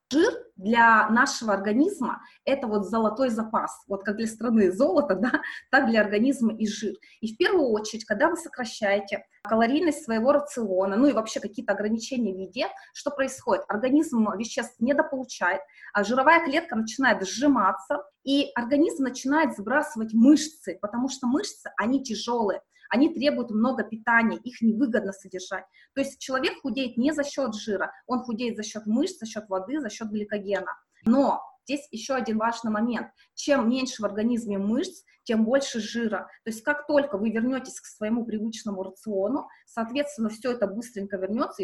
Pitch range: 210-275 Hz